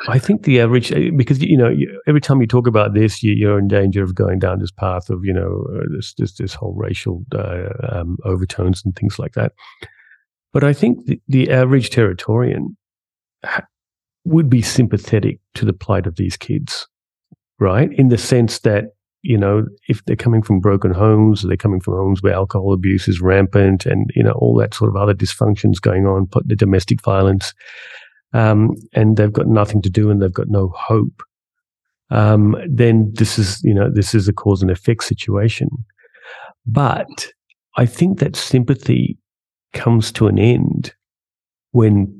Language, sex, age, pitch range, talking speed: English, male, 40-59, 95-120 Hz, 185 wpm